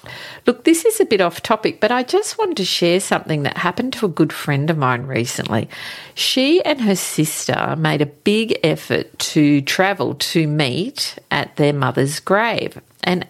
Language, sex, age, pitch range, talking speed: English, female, 50-69, 155-220 Hz, 180 wpm